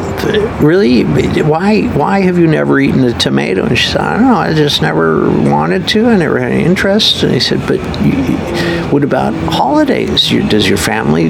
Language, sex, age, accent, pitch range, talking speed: English, male, 50-69, American, 105-155 Hz, 185 wpm